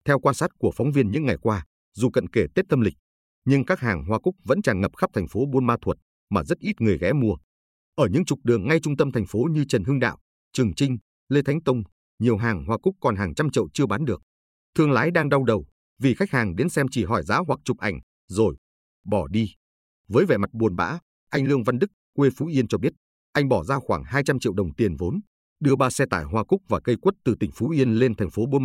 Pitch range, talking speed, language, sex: 90-140 Hz, 260 wpm, Vietnamese, male